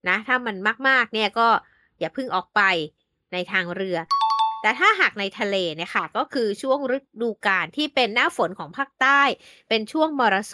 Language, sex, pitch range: Thai, female, 200-275 Hz